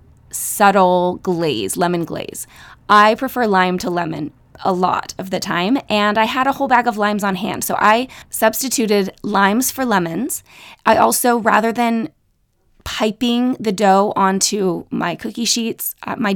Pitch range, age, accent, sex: 175-225 Hz, 20-39, American, female